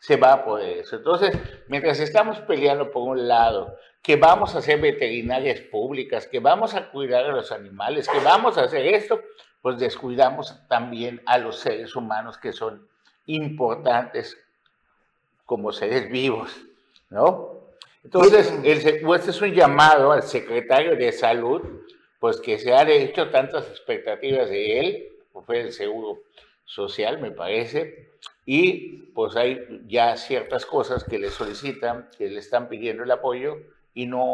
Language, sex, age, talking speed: Spanish, male, 50-69, 155 wpm